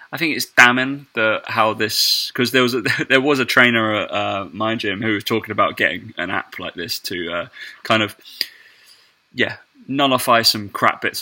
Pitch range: 105-125 Hz